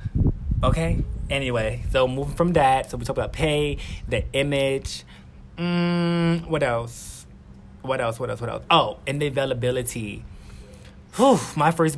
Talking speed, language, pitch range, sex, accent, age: 145 wpm, English, 115-150 Hz, male, American, 20-39